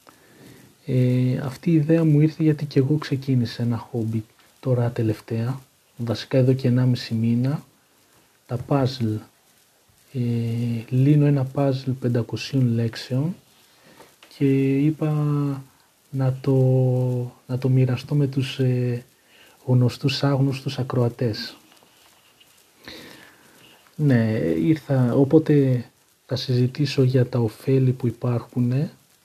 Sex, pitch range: male, 125-140 Hz